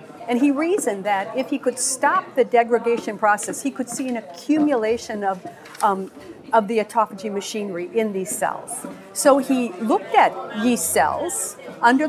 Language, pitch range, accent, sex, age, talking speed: English, 220-290 Hz, American, female, 50-69, 155 wpm